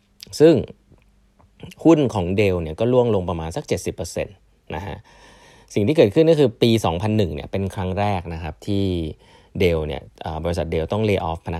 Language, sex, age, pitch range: Thai, male, 20-39, 80-100 Hz